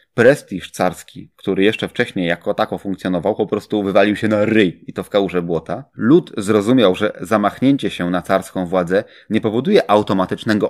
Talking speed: 170 wpm